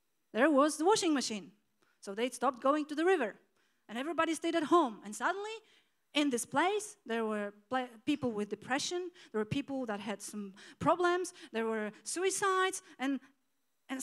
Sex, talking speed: female, 165 wpm